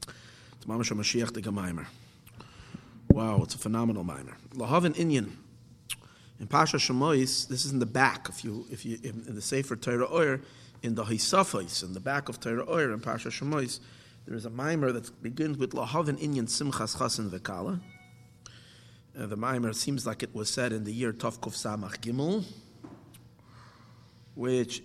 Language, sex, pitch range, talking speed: English, male, 110-130 Hz, 155 wpm